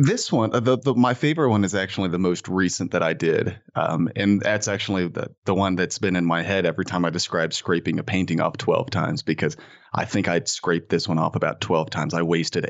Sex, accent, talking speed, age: male, American, 235 wpm, 30-49